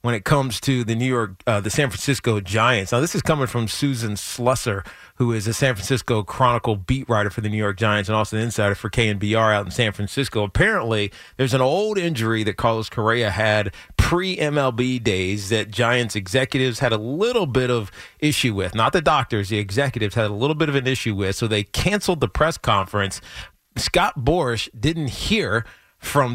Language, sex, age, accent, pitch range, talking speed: English, male, 40-59, American, 110-140 Hz, 200 wpm